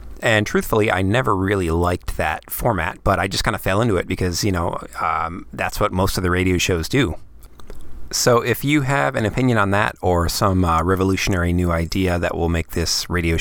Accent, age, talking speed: American, 30-49, 210 wpm